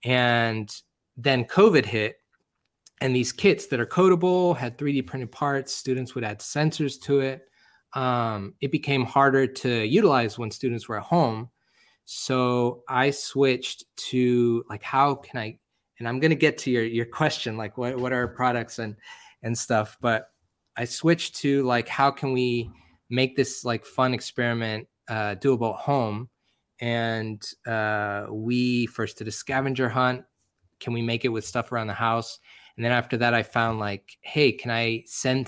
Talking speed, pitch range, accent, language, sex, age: 175 wpm, 110-130 Hz, American, English, male, 20-39